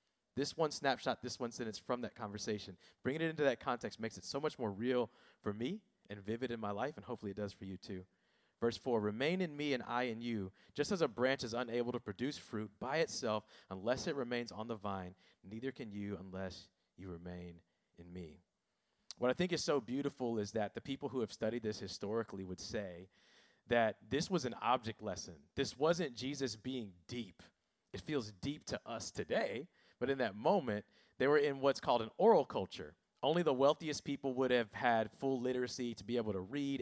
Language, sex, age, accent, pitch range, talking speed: English, male, 30-49, American, 105-140 Hz, 210 wpm